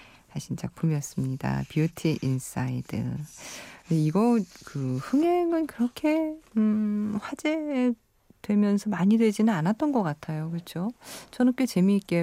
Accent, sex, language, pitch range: native, female, Korean, 145-210 Hz